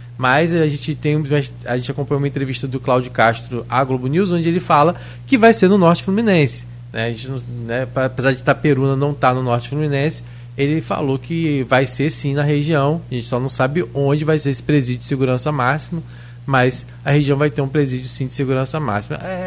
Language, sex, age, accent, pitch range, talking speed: Portuguese, male, 20-39, Brazilian, 125-160 Hz, 220 wpm